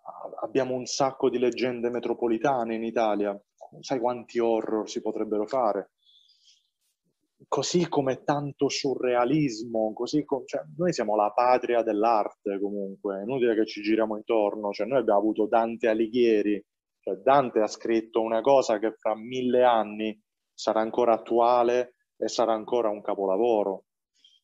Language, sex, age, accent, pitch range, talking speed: Italian, male, 30-49, native, 110-135 Hz, 130 wpm